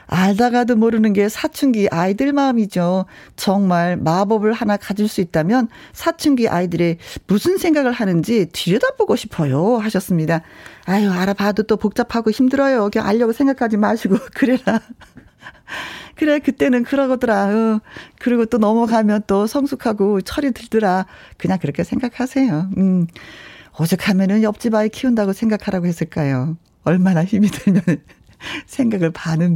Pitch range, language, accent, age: 175-240 Hz, Korean, native, 40-59